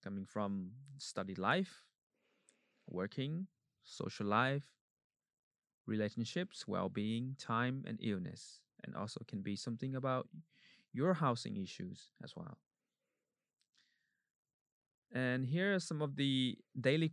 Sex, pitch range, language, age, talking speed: male, 110-155 Hz, English, 20-39, 105 wpm